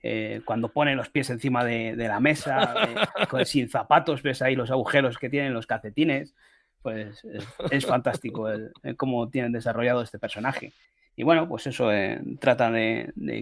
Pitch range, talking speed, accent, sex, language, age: 110-130 Hz, 185 wpm, Spanish, male, Spanish, 30-49